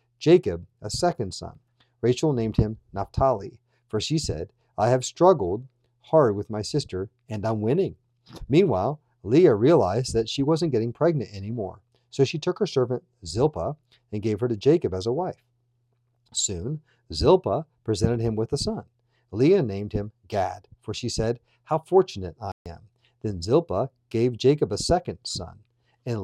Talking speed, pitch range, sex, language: 160 wpm, 110-140 Hz, male, English